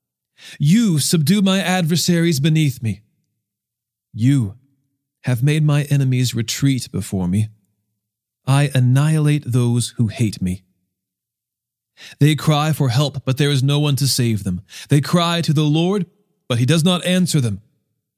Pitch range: 120-165 Hz